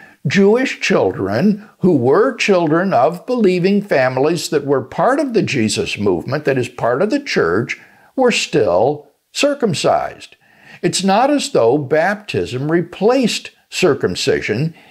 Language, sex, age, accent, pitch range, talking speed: English, male, 60-79, American, 155-230 Hz, 125 wpm